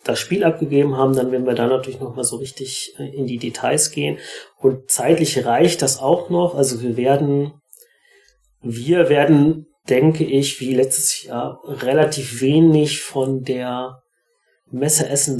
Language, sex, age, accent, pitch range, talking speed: German, male, 30-49, German, 130-160 Hz, 150 wpm